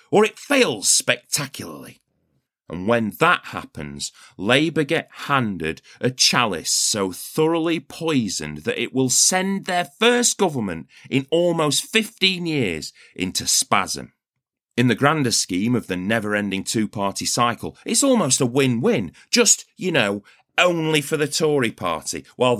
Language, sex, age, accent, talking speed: English, male, 30-49, British, 135 wpm